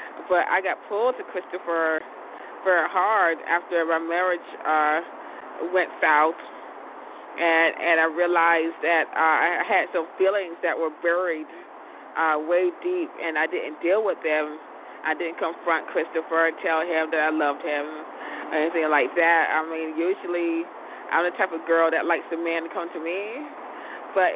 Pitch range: 160-185 Hz